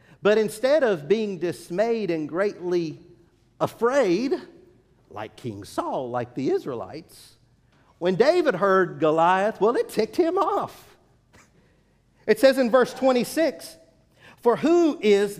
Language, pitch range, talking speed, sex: English, 180-270 Hz, 120 wpm, male